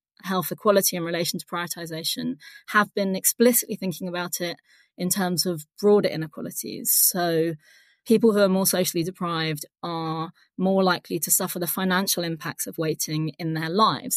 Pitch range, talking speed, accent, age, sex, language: 165-205 Hz, 155 wpm, British, 20-39, female, English